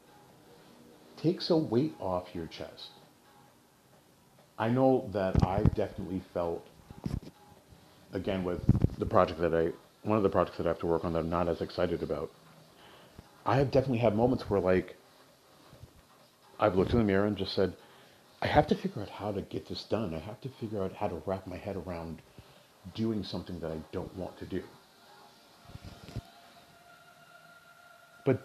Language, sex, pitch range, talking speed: English, male, 90-120 Hz, 165 wpm